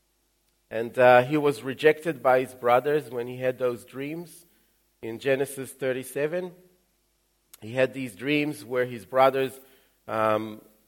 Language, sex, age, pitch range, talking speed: English, male, 40-59, 110-135 Hz, 130 wpm